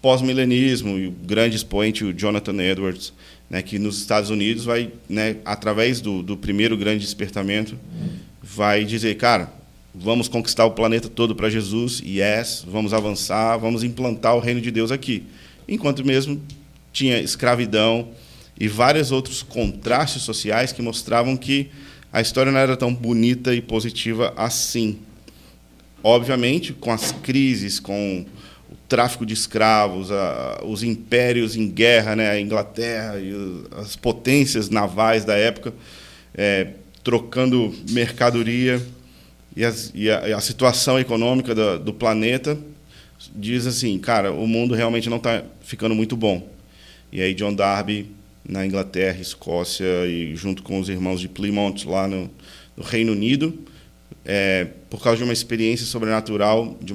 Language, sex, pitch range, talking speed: Portuguese, male, 100-120 Hz, 145 wpm